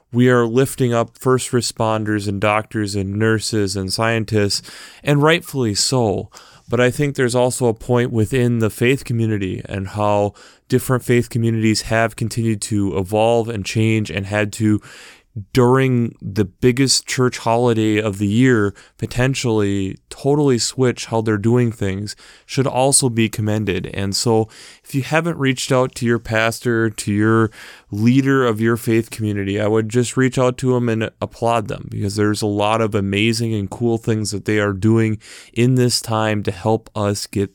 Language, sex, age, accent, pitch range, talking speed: English, male, 30-49, American, 110-130 Hz, 170 wpm